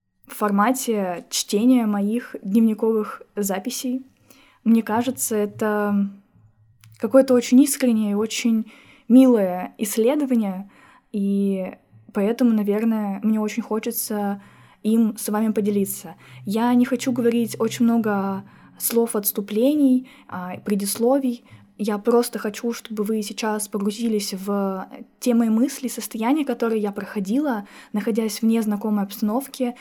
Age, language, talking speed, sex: 20-39, Russian, 110 wpm, female